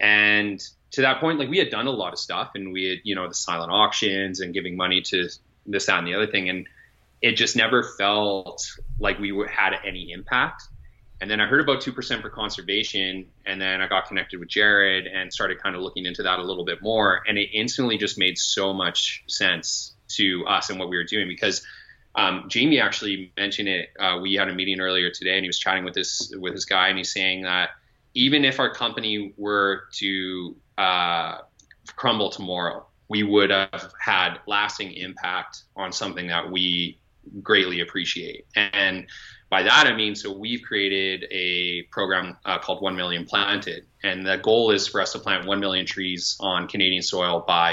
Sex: male